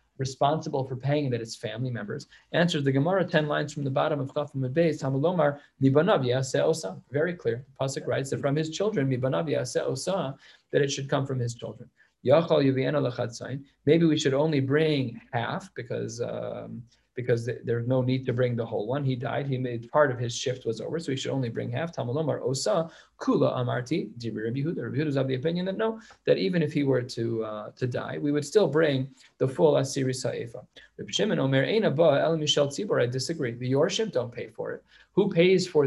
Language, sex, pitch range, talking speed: English, male, 130-155 Hz, 190 wpm